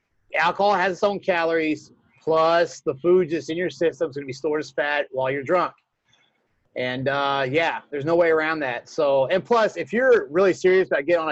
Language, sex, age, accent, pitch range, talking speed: English, male, 30-49, American, 150-185 Hz, 205 wpm